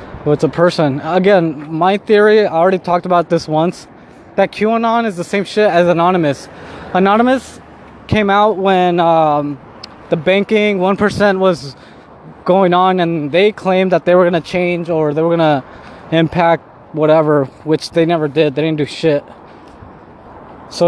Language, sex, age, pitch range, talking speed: English, male, 20-39, 145-185 Hz, 155 wpm